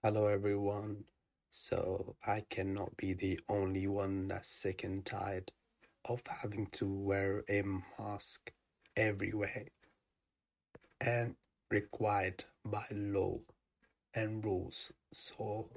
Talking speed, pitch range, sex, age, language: 105 wpm, 100-110 Hz, male, 30-49, English